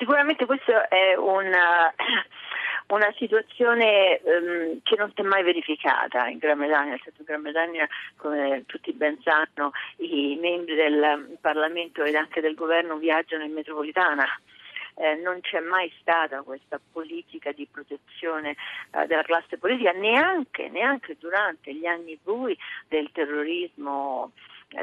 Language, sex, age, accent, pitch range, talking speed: Italian, female, 40-59, native, 155-185 Hz, 145 wpm